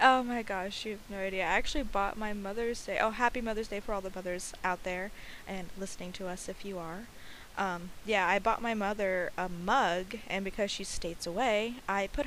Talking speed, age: 220 wpm, 20-39